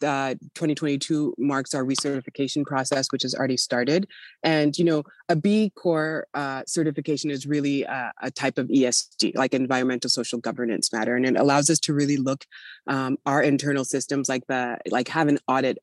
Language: English